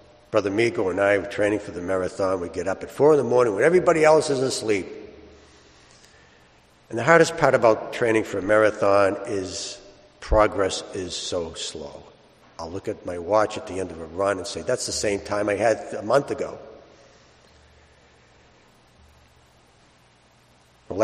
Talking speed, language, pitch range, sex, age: 170 wpm, English, 80-125 Hz, male, 60-79